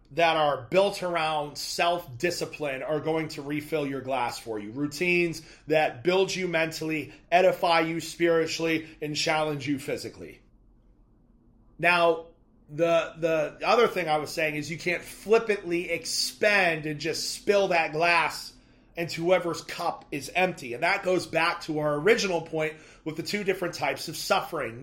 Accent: American